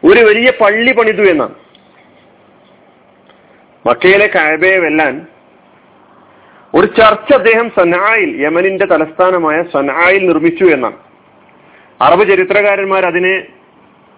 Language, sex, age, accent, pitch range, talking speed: Malayalam, male, 40-59, native, 185-275 Hz, 85 wpm